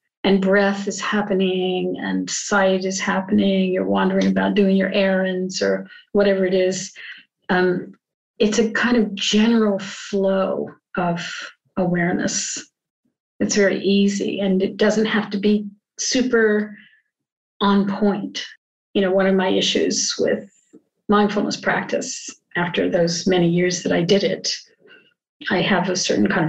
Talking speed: 140 wpm